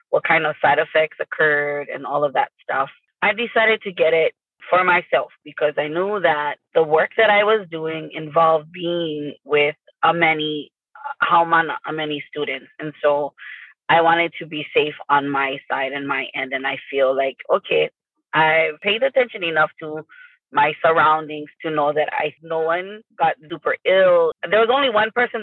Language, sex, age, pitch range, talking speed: English, female, 20-39, 150-200 Hz, 175 wpm